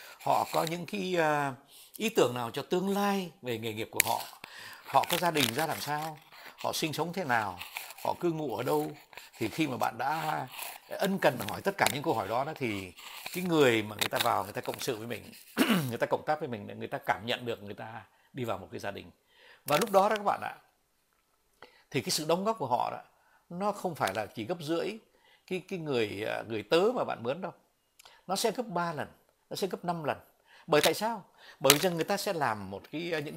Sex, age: male, 60-79